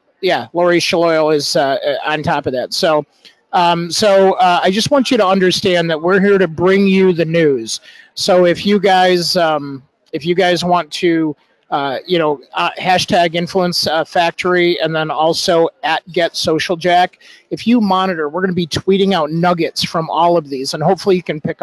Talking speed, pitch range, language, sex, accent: 195 wpm, 170-195 Hz, English, male, American